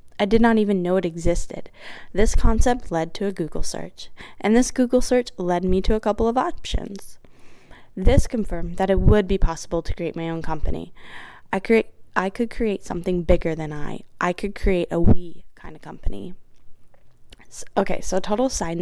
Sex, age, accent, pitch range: female, 20-39, American, 165-200 Hz